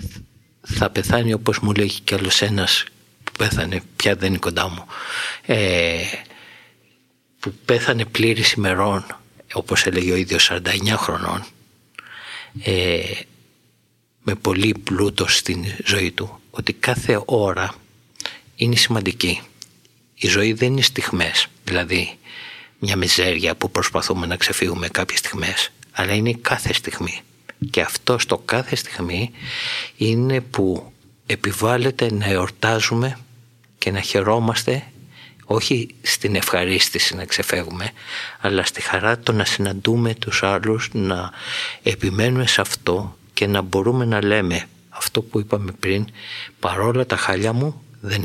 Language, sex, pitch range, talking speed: Greek, male, 95-120 Hz, 125 wpm